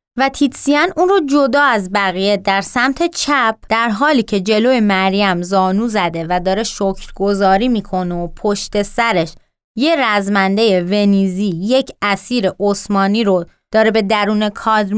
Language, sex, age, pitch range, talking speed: Persian, female, 20-39, 190-250 Hz, 140 wpm